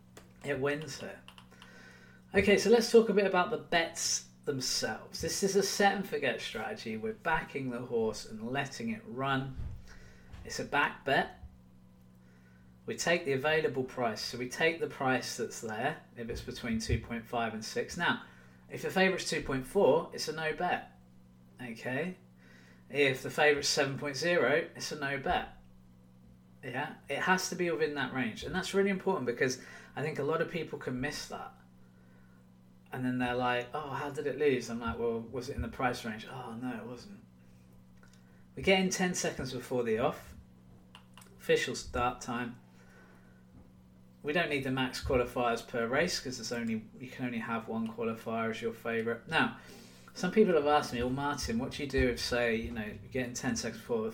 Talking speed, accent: 185 wpm, British